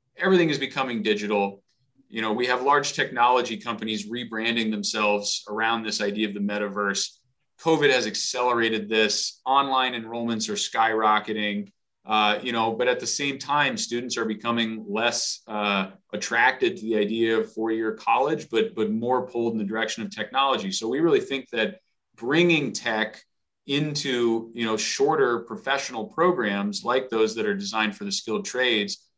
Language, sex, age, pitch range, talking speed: English, male, 30-49, 105-140 Hz, 160 wpm